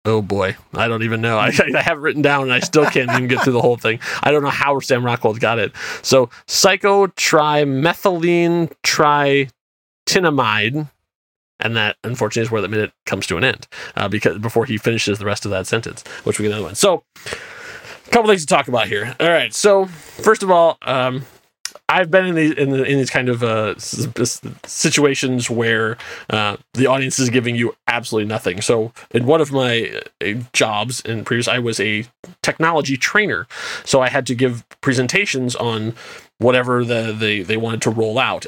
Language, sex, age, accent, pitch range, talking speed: English, male, 20-39, American, 115-150 Hz, 190 wpm